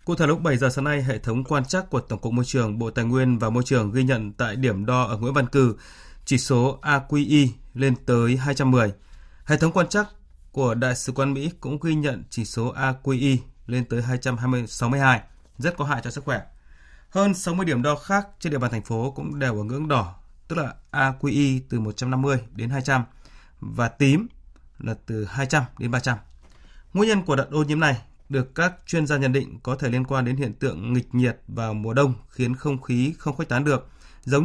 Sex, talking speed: male, 240 wpm